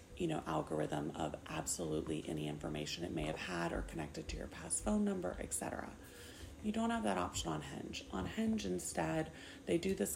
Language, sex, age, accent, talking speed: English, female, 30-49, American, 190 wpm